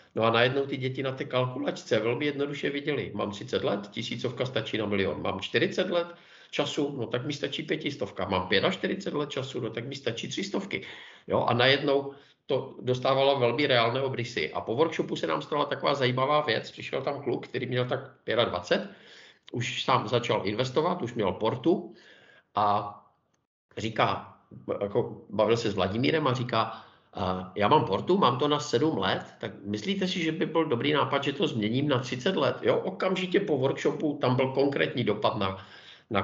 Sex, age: male, 50-69